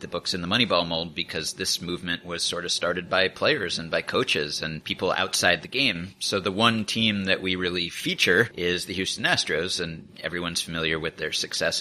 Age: 30-49